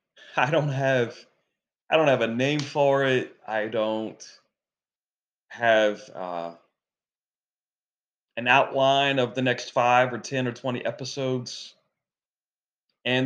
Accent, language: American, English